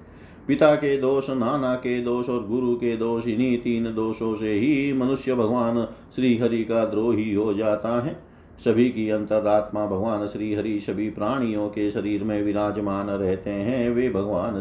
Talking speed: 165 wpm